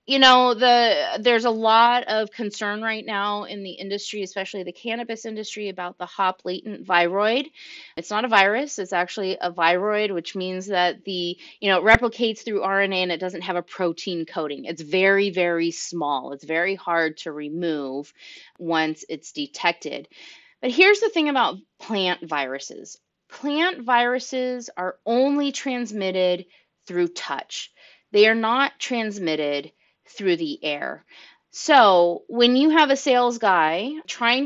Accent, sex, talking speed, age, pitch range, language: American, female, 150 wpm, 30-49, 175-235 Hz, English